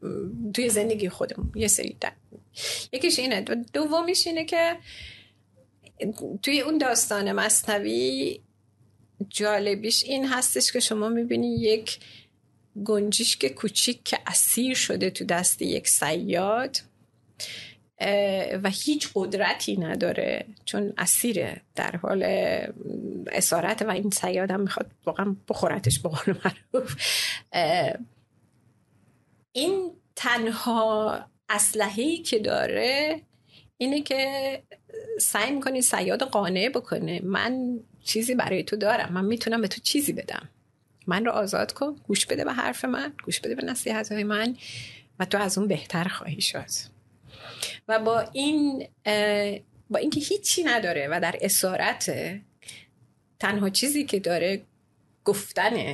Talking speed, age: 120 wpm, 30-49